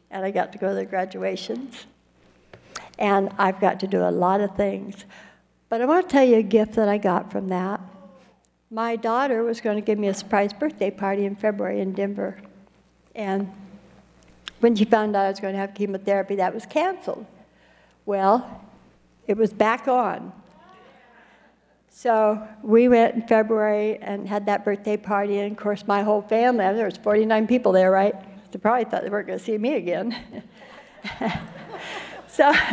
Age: 60-79